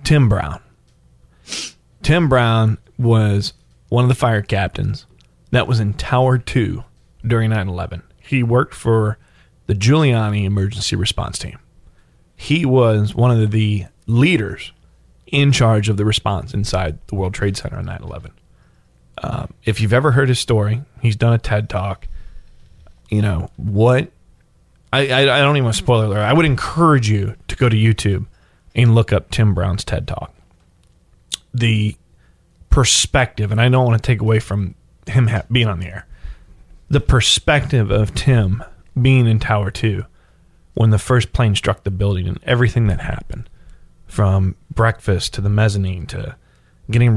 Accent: American